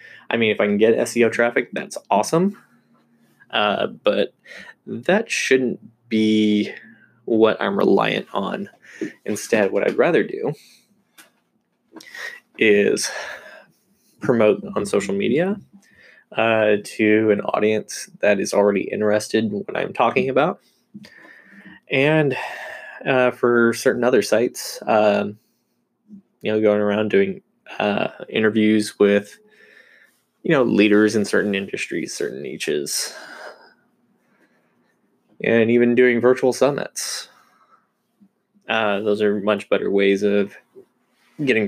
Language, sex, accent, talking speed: English, male, American, 110 wpm